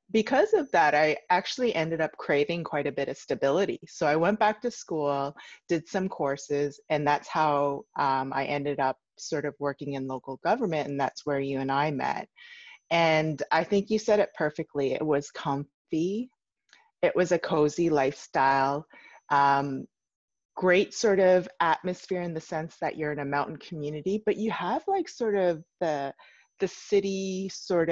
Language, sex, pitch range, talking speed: English, female, 145-190 Hz, 175 wpm